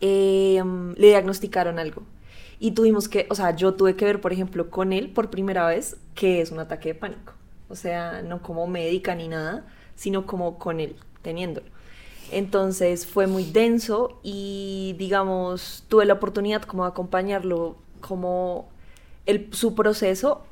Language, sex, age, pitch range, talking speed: Spanish, female, 20-39, 175-205 Hz, 160 wpm